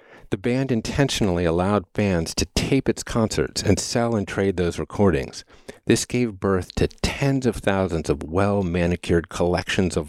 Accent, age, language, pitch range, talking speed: American, 50-69, English, 85-105 Hz, 155 wpm